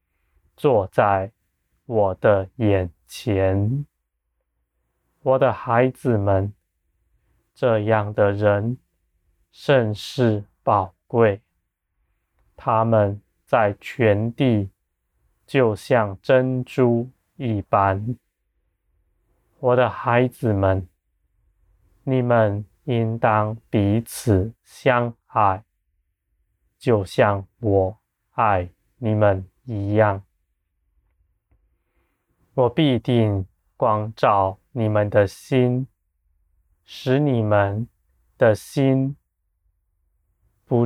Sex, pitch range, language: male, 85-115 Hz, Chinese